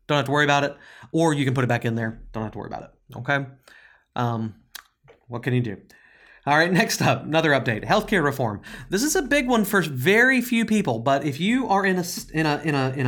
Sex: male